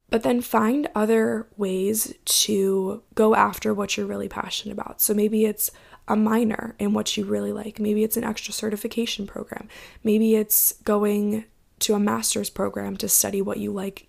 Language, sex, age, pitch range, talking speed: English, female, 20-39, 190-220 Hz, 175 wpm